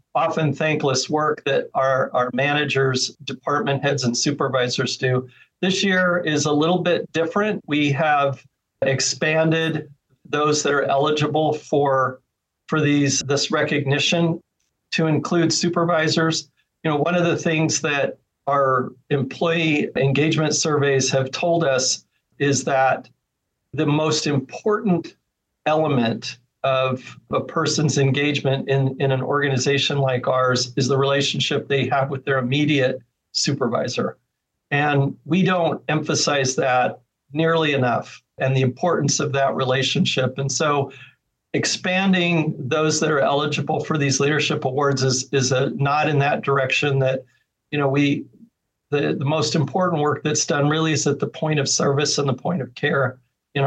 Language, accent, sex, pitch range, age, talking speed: English, American, male, 135-155 Hz, 50-69, 145 wpm